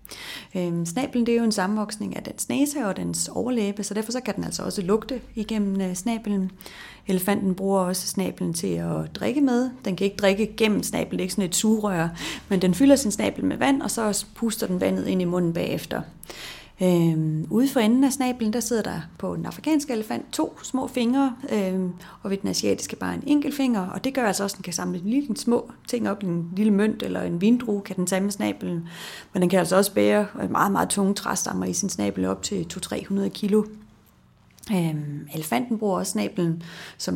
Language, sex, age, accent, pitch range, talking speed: Danish, female, 30-49, native, 175-225 Hz, 205 wpm